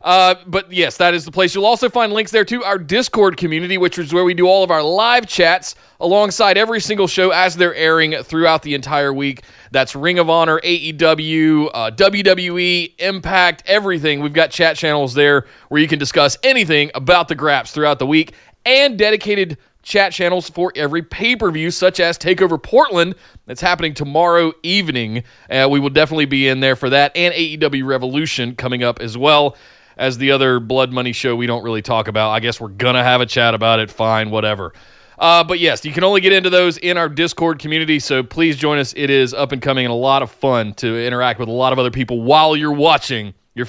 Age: 30-49